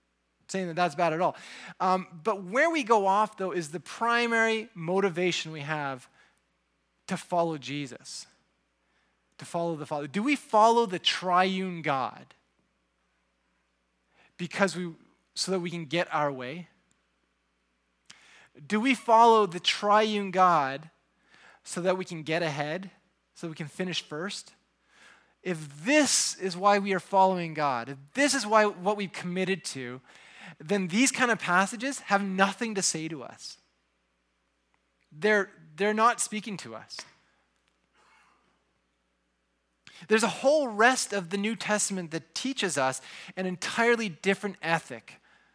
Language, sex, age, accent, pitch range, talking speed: English, male, 20-39, American, 135-205 Hz, 140 wpm